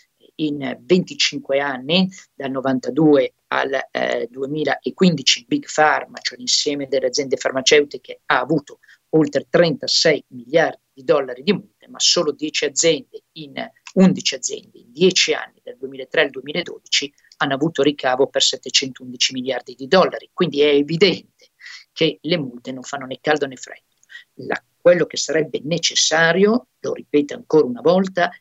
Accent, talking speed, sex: native, 145 wpm, male